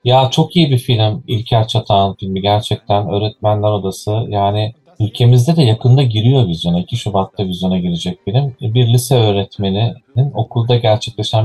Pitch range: 100-120 Hz